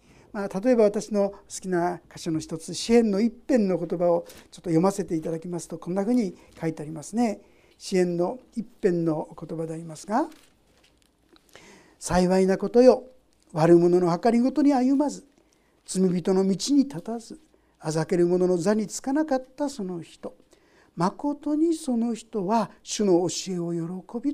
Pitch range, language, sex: 175-265 Hz, Japanese, male